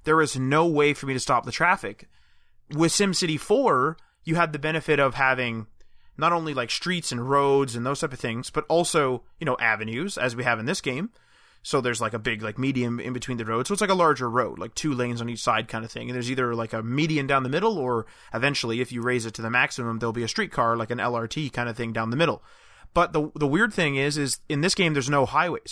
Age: 20-39